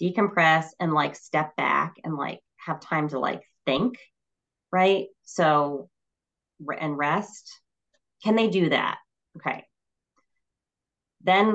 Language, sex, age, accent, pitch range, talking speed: English, female, 20-39, American, 140-180 Hz, 115 wpm